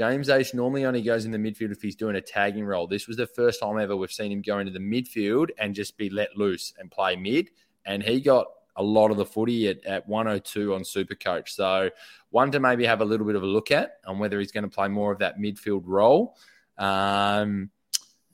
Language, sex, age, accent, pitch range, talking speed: English, male, 20-39, Australian, 95-110 Hz, 235 wpm